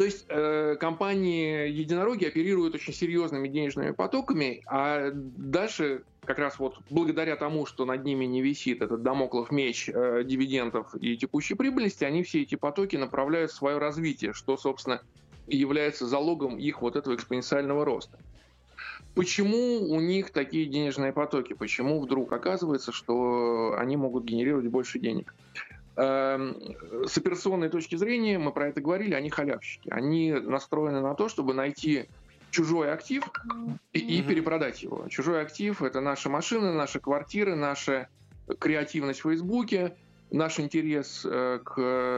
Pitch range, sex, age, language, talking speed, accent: 130-160 Hz, male, 20-39, Russian, 140 wpm, native